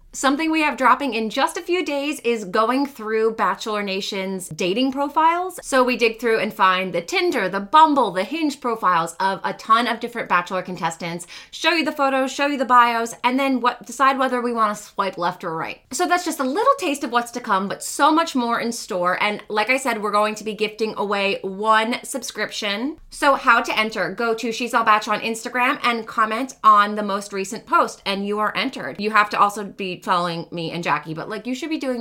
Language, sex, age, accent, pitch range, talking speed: English, female, 20-39, American, 185-255 Hz, 225 wpm